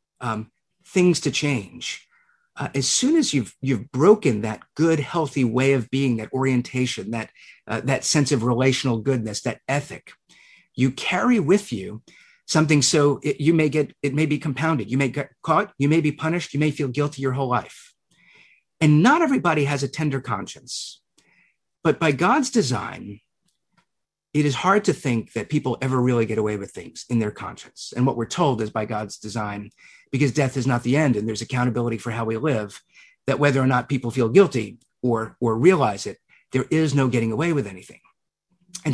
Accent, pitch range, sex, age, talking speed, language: American, 120-150 Hz, male, 50-69, 190 wpm, English